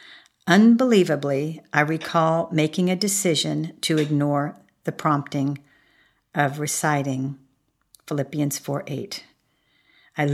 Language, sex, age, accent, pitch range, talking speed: English, female, 50-69, American, 145-175 Hz, 95 wpm